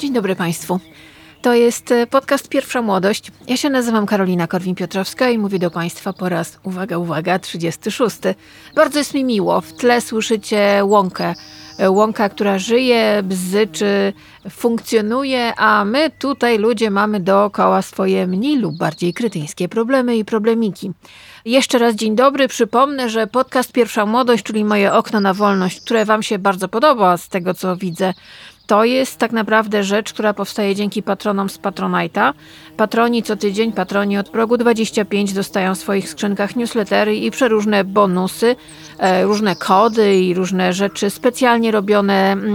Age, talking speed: 30-49, 150 wpm